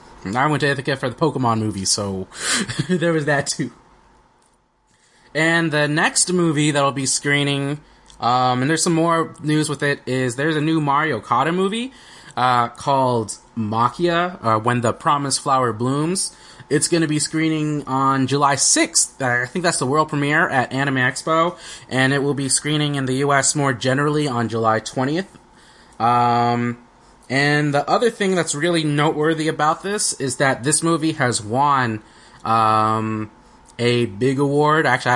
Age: 20-39